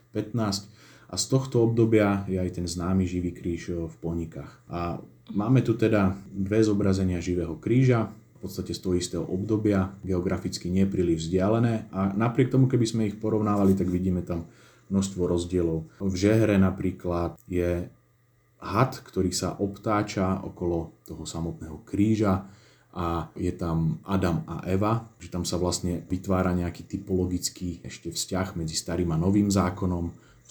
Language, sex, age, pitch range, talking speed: Slovak, male, 30-49, 85-100 Hz, 150 wpm